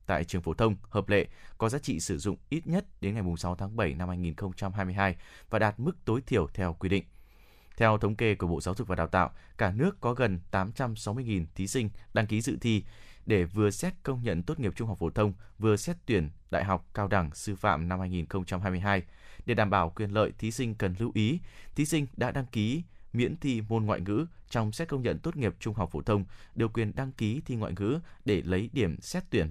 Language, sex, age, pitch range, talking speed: Vietnamese, male, 20-39, 95-115 Hz, 230 wpm